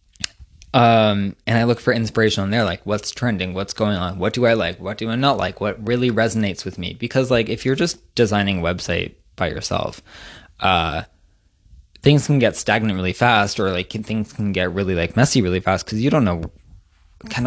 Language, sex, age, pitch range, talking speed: English, male, 20-39, 90-115 Hz, 205 wpm